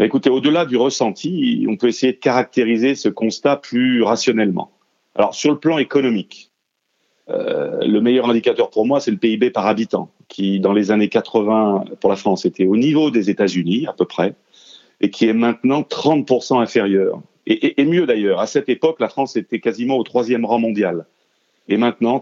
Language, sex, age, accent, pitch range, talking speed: French, male, 40-59, French, 100-125 Hz, 185 wpm